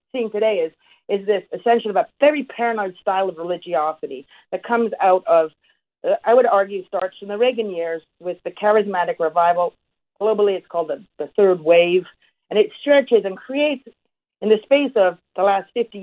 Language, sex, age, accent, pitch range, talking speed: English, female, 40-59, American, 175-235 Hz, 185 wpm